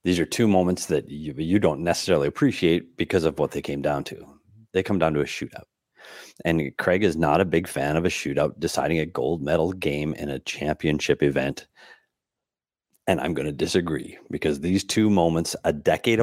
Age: 30-49